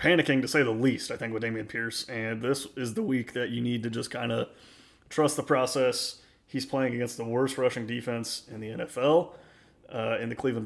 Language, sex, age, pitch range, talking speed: English, male, 30-49, 115-130 Hz, 220 wpm